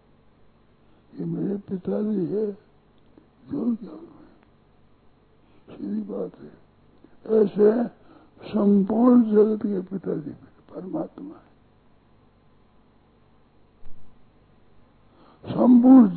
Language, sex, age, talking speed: Hindi, male, 60-79, 60 wpm